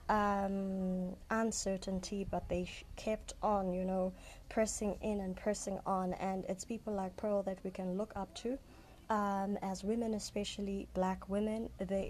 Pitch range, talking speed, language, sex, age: 185-205 Hz, 155 wpm, English, female, 20-39